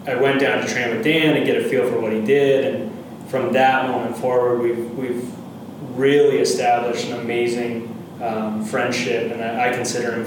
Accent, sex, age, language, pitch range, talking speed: American, male, 20-39, English, 110-125 Hz, 185 wpm